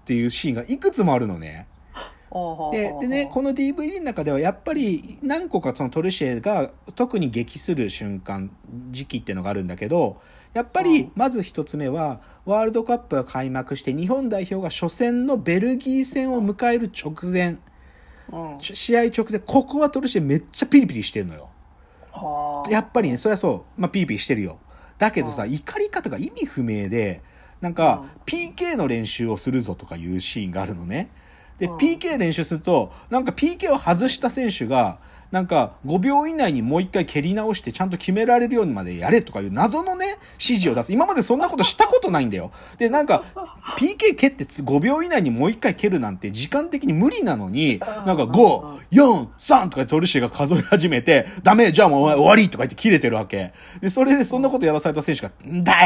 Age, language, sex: 40-59, Japanese, male